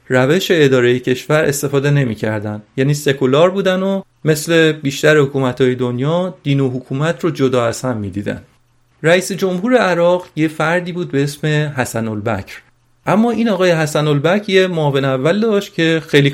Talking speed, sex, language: 145 wpm, male, Persian